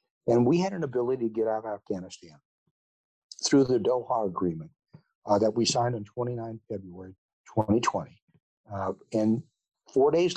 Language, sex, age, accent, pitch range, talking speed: English, male, 50-69, American, 100-130 Hz, 150 wpm